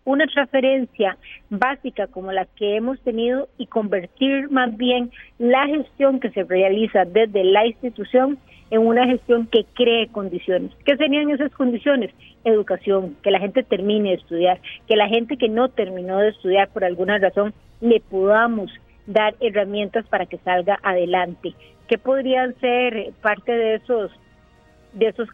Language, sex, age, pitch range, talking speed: Spanish, female, 40-59, 195-245 Hz, 150 wpm